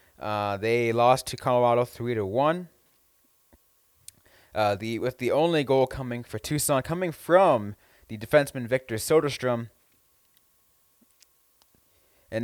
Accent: American